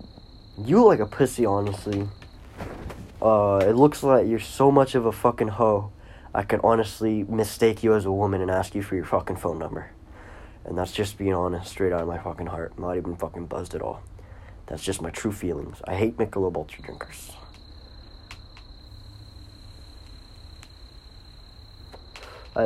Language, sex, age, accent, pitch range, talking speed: English, male, 20-39, American, 90-110 Hz, 165 wpm